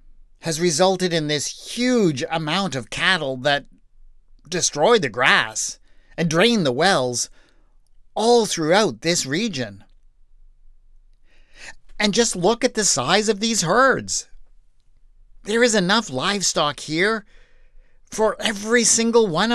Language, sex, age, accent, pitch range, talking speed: English, male, 50-69, American, 130-210 Hz, 115 wpm